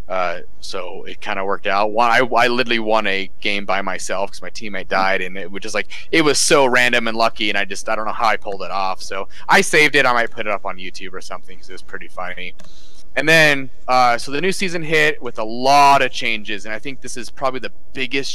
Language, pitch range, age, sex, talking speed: English, 100-125 Hz, 30-49, male, 260 wpm